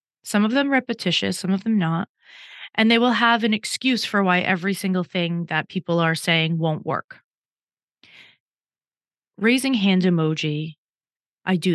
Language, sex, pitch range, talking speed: English, female, 170-220 Hz, 155 wpm